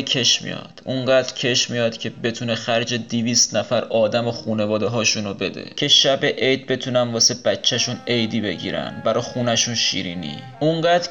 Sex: male